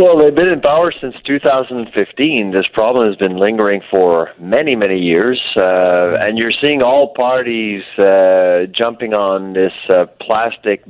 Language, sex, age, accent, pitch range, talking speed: English, male, 40-59, American, 100-125 Hz, 155 wpm